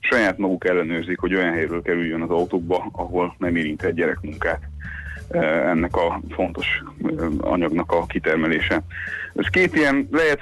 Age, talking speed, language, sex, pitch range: 30-49, 130 wpm, Hungarian, male, 90-105 Hz